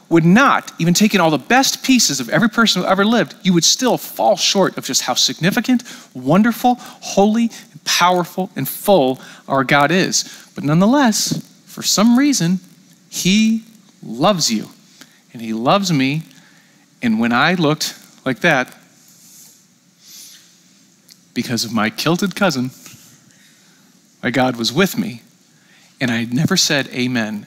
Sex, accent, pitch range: male, American, 125-195 Hz